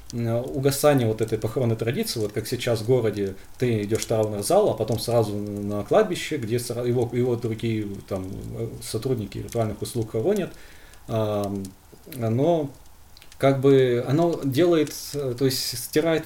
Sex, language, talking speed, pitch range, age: male, Russian, 135 wpm, 110-135 Hz, 20-39